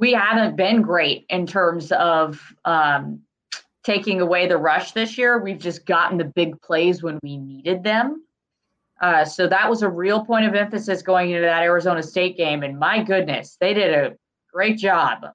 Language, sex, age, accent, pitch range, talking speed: English, female, 20-39, American, 165-220 Hz, 185 wpm